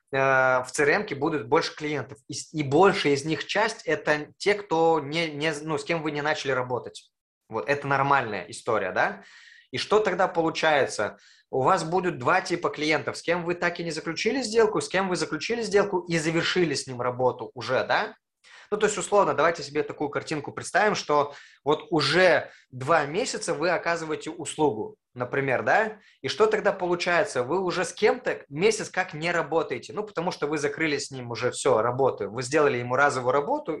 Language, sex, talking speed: Russian, male, 185 wpm